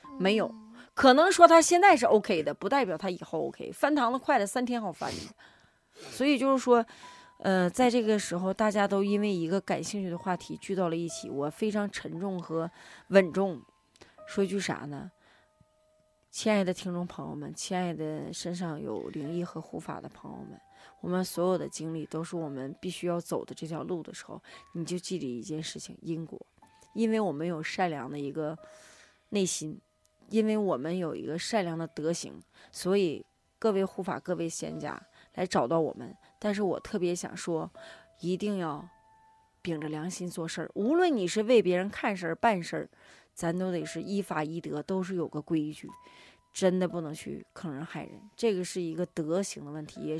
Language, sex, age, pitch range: Chinese, female, 20-39, 165-210 Hz